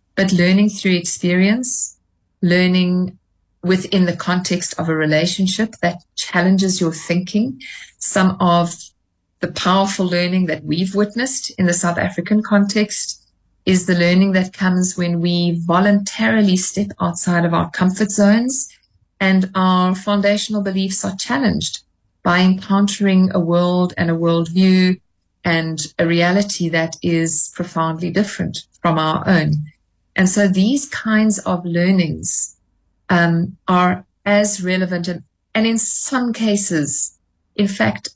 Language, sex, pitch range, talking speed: English, female, 170-200 Hz, 130 wpm